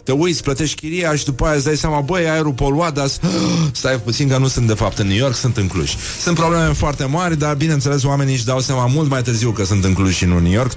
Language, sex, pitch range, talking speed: Romanian, male, 105-140 Hz, 275 wpm